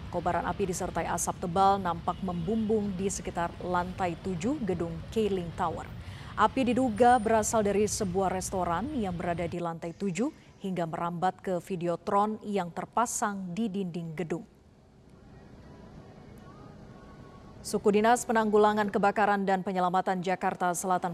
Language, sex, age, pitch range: Indonesian, female, 30-49, 180-220 Hz